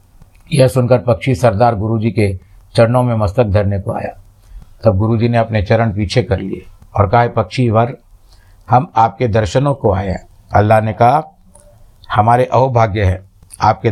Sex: male